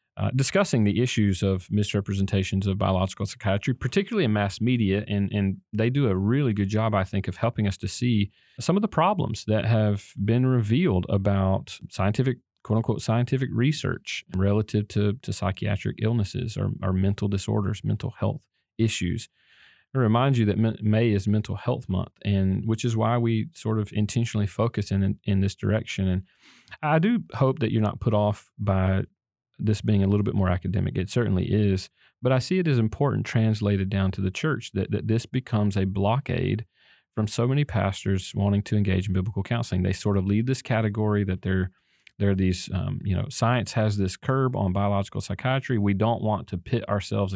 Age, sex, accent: 40-59, male, American